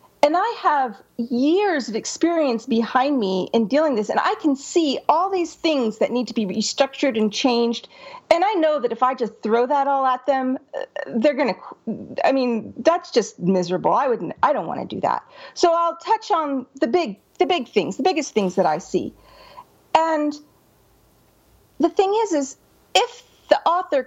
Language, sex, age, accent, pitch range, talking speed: English, female, 40-59, American, 225-330 Hz, 190 wpm